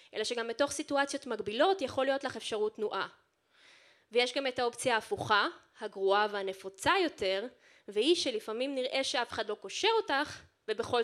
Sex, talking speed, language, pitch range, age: female, 145 wpm, Hebrew, 220-315 Hz, 20-39